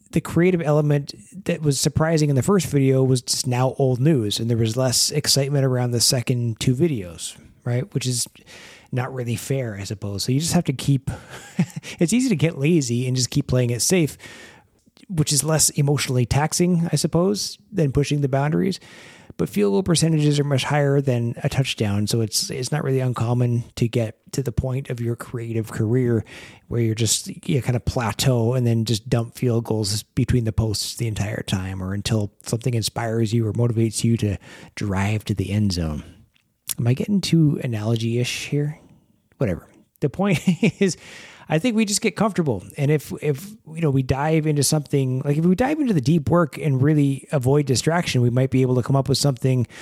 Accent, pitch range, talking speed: American, 115-155 Hz, 200 wpm